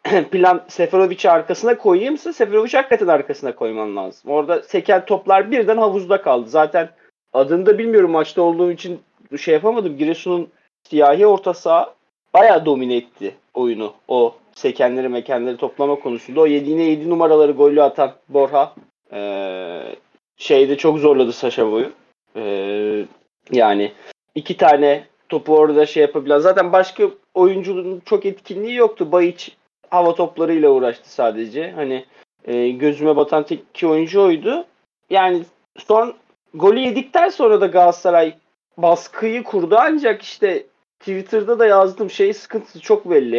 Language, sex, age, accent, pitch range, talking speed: Turkish, male, 40-59, native, 150-200 Hz, 130 wpm